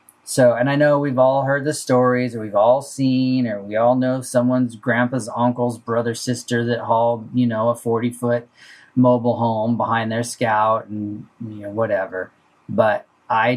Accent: American